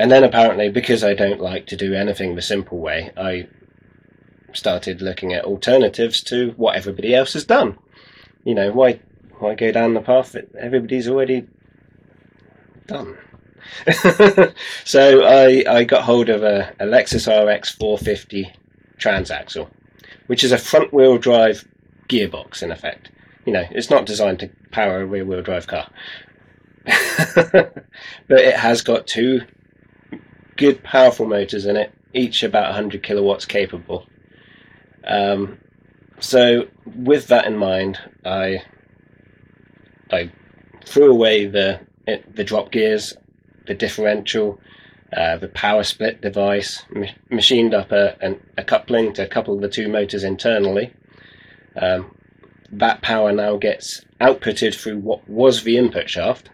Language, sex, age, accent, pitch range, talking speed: English, male, 20-39, British, 100-120 Hz, 140 wpm